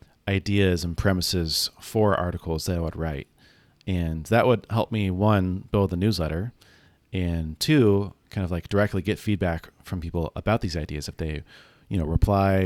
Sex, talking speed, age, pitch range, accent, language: male, 170 wpm, 30-49, 85-100 Hz, American, English